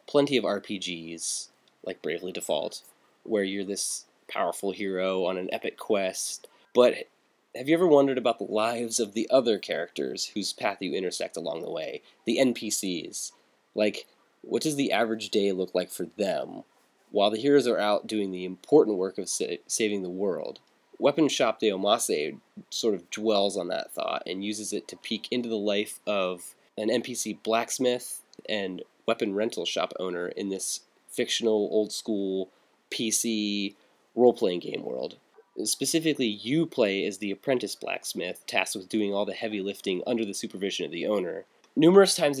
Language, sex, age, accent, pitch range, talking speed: English, male, 20-39, American, 95-120 Hz, 165 wpm